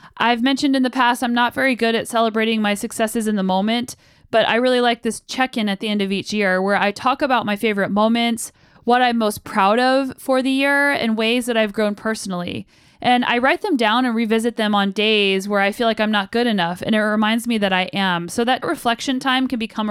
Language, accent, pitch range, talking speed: English, American, 200-240 Hz, 240 wpm